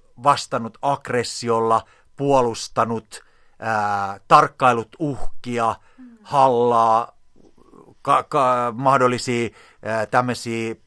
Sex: male